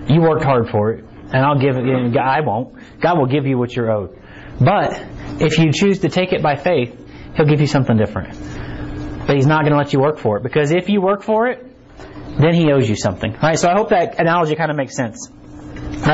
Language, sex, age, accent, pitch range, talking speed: English, male, 30-49, American, 125-180 Hz, 255 wpm